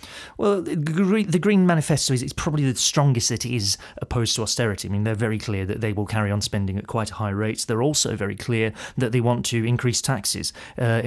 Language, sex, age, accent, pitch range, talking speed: English, male, 30-49, British, 100-120 Hz, 215 wpm